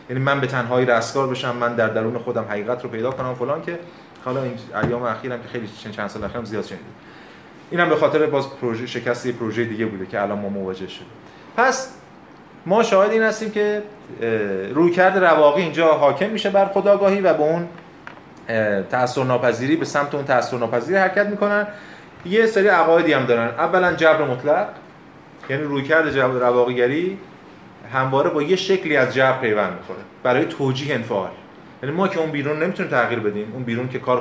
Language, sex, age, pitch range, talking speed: Persian, male, 30-49, 115-155 Hz, 180 wpm